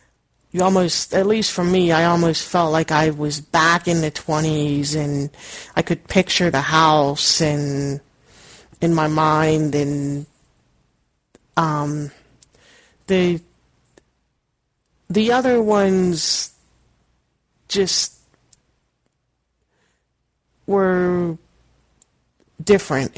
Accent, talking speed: American, 90 wpm